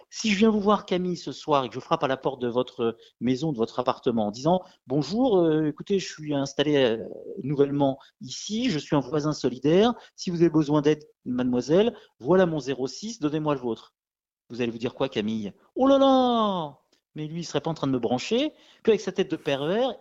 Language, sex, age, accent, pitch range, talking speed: French, male, 50-69, French, 130-180 Hz, 220 wpm